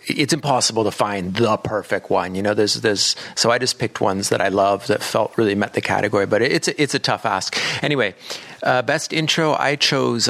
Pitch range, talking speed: 105-125 Hz, 220 wpm